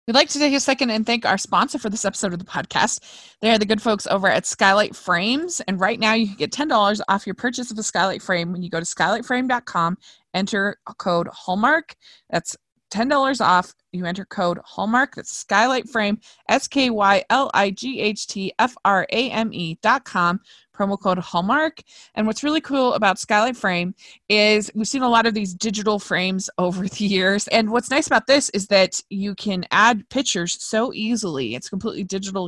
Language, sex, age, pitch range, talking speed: English, female, 20-39, 185-235 Hz, 180 wpm